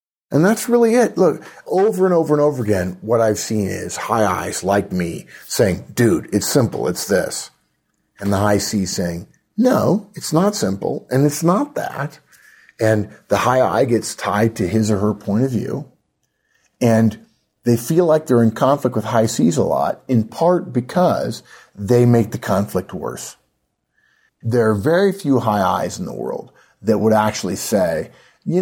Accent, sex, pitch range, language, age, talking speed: American, male, 105-150 Hz, English, 50-69, 180 wpm